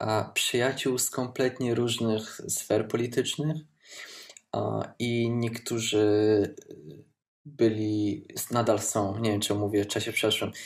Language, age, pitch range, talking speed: Polish, 20-39, 110-120 Hz, 100 wpm